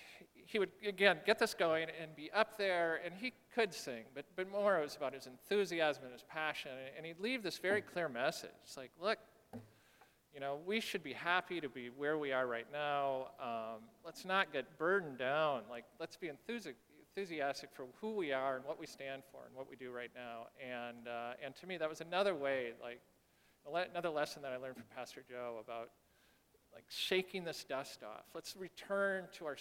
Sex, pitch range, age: male, 125-175 Hz, 40-59